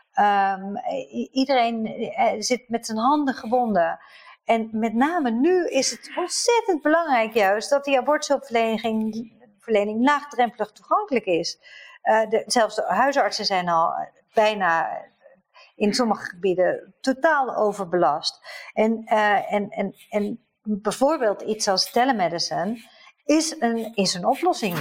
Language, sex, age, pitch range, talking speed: Dutch, female, 50-69, 190-255 Hz, 125 wpm